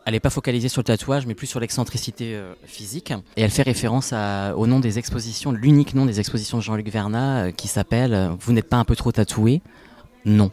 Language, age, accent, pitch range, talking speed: French, 20-39, French, 100-125 Hz, 220 wpm